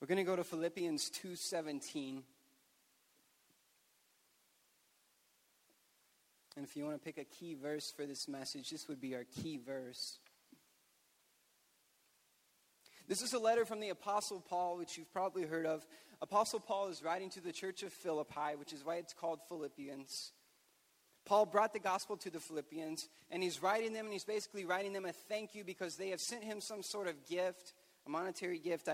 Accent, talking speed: American, 175 wpm